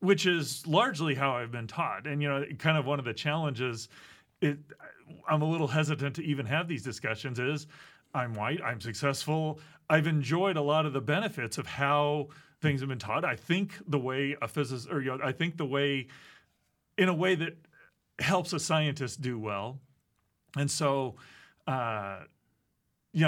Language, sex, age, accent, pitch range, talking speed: English, male, 40-59, American, 135-160 Hz, 180 wpm